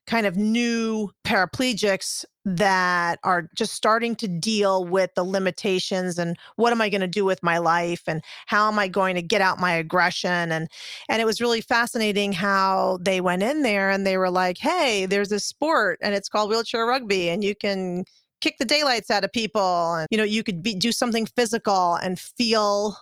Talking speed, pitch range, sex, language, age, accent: 200 wpm, 190-220 Hz, female, English, 30-49, American